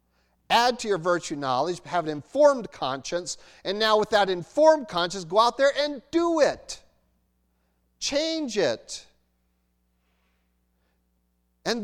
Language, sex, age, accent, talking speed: English, male, 50-69, American, 120 wpm